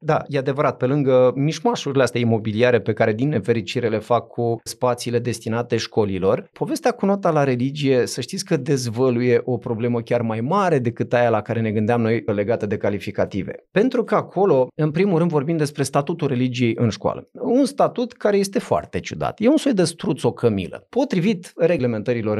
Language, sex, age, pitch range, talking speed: Romanian, male, 30-49, 120-175 Hz, 180 wpm